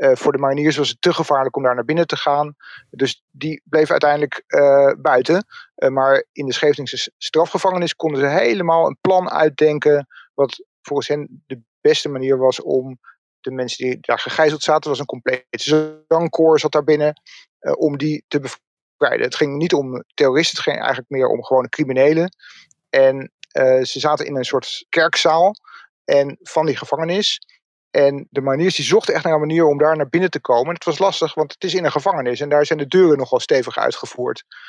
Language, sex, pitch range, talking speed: Dutch, male, 135-160 Hz, 200 wpm